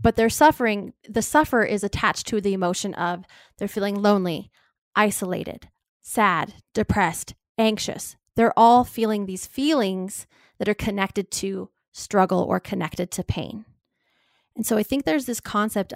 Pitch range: 190-230 Hz